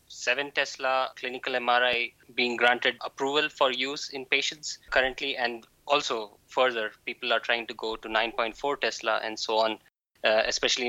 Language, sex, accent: English, male, Indian